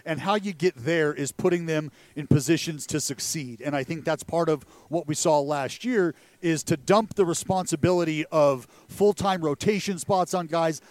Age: 40-59